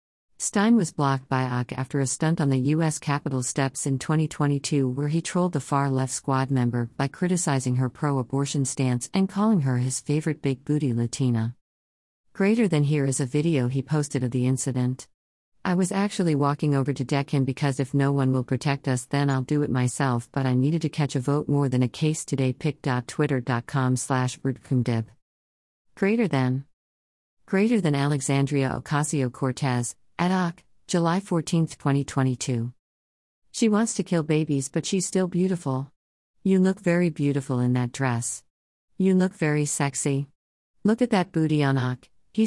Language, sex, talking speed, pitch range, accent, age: English, female, 165 wpm, 130-160 Hz, American, 50-69